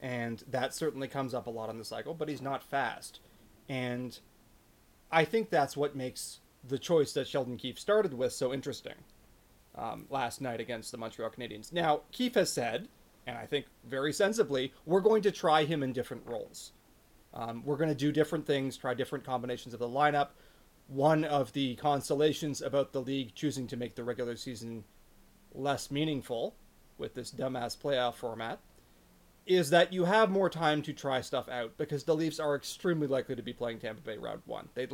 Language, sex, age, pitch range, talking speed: English, male, 30-49, 125-155 Hz, 190 wpm